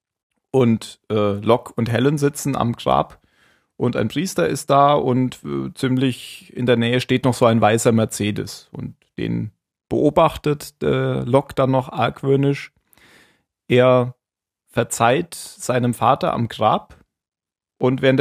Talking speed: 135 wpm